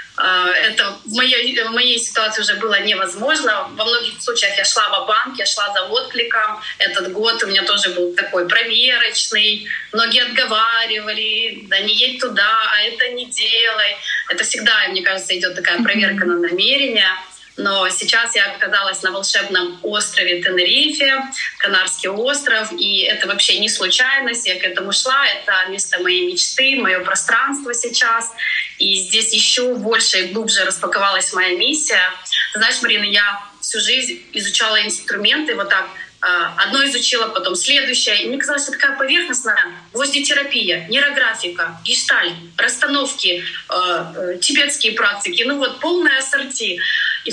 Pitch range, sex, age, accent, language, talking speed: 195-260 Hz, female, 20-39, native, Russian, 140 wpm